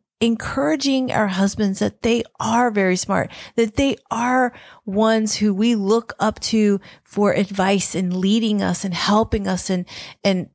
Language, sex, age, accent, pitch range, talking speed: English, female, 40-59, American, 190-230 Hz, 155 wpm